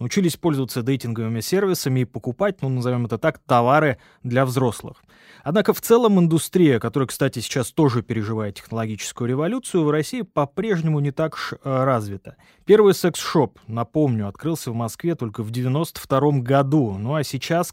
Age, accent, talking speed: 20-39, native, 145 wpm